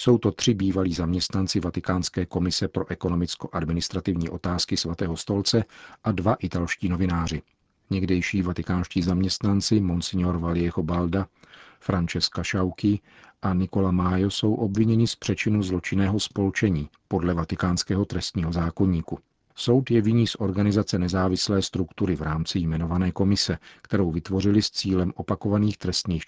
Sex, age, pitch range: male, 40-59, 90-105 Hz